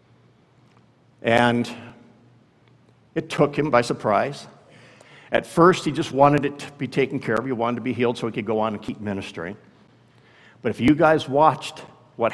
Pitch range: 115-155 Hz